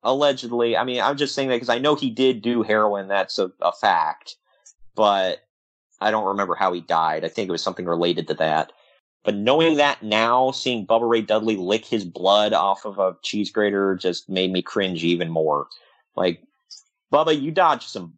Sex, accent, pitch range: male, American, 110-155 Hz